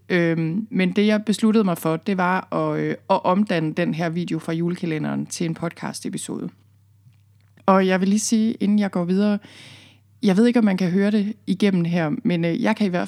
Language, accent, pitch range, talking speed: Danish, native, 165-195 Hz, 210 wpm